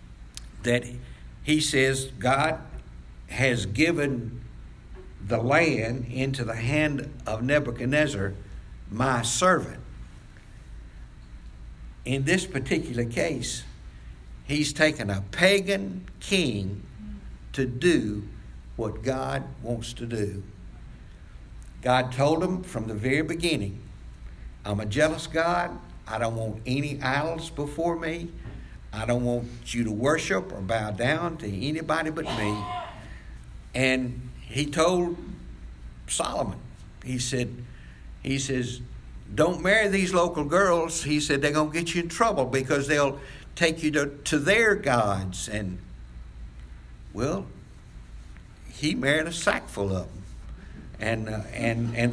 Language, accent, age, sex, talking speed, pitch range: English, American, 60-79, male, 120 wpm, 100-155 Hz